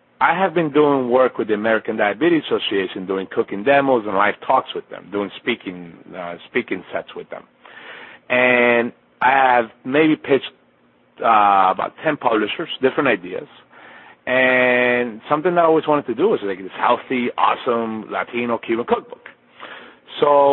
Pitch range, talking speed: 105-150 Hz, 155 wpm